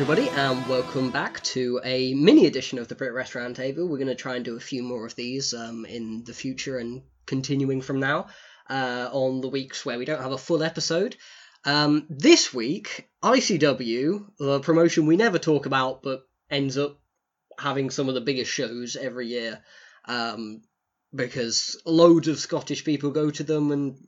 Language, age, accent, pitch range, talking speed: English, 10-29, British, 130-165 Hz, 185 wpm